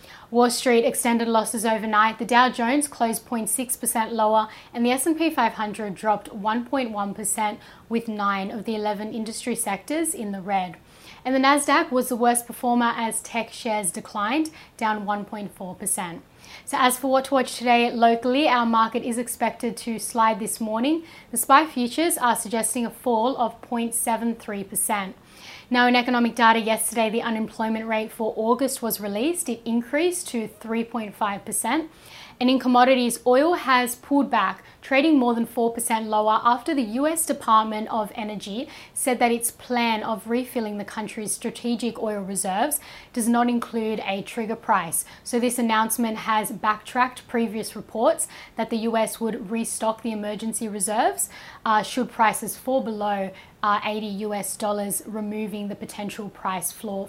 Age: 10-29